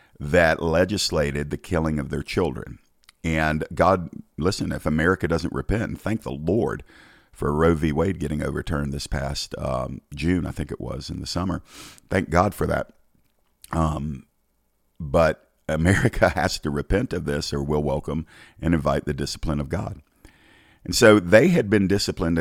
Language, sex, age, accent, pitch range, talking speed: English, male, 50-69, American, 75-90 Hz, 165 wpm